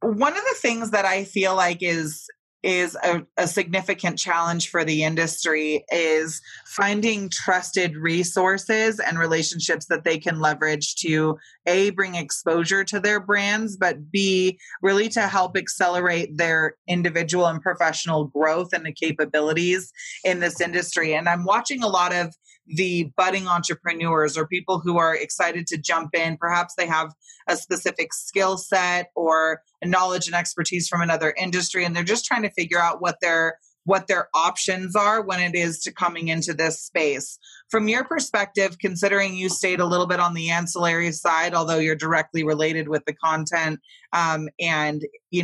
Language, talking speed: English, 170 wpm